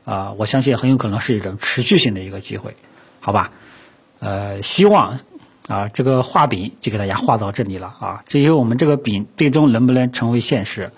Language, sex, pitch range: Chinese, male, 105-130 Hz